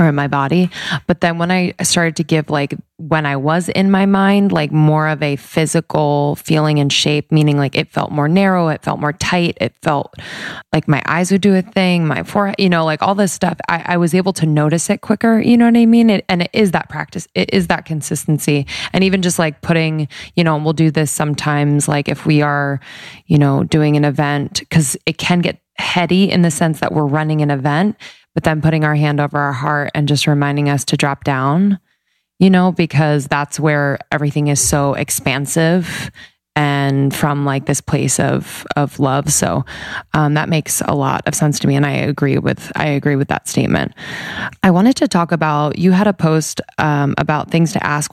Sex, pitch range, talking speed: female, 145-175 Hz, 215 wpm